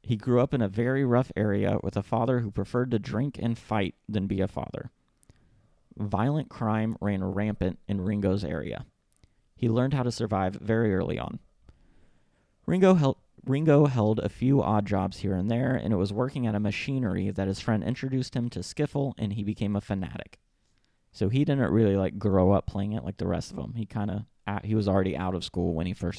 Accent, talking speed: American, 210 wpm